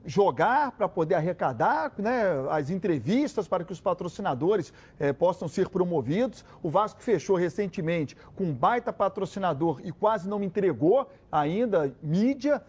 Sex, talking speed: male, 135 wpm